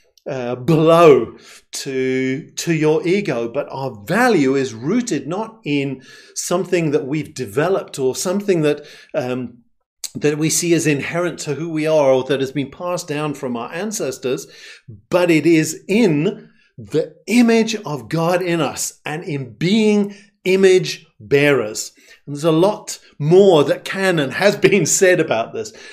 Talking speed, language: 155 wpm, English